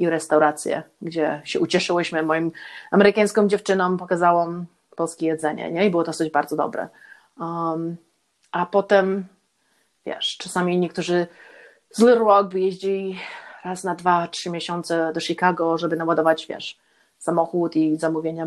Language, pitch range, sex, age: Polish, 165-190 Hz, female, 30-49